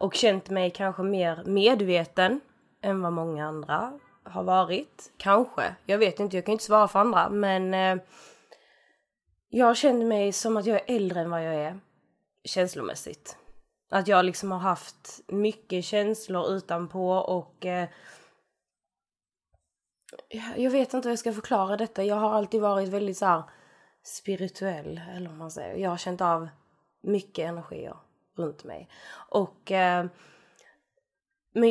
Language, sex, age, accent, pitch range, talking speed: English, female, 20-39, Swedish, 180-210 Hz, 150 wpm